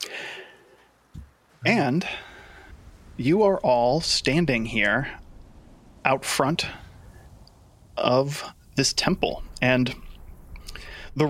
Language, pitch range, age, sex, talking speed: English, 110-145 Hz, 30-49, male, 70 wpm